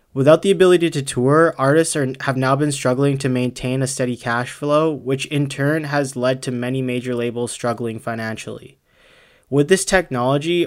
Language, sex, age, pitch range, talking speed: English, male, 20-39, 125-145 Hz, 175 wpm